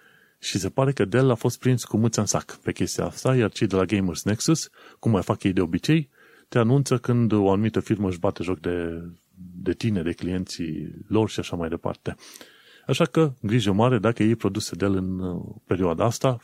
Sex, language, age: male, Romanian, 30-49